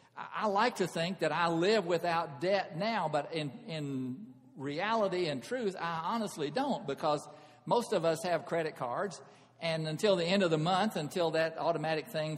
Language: English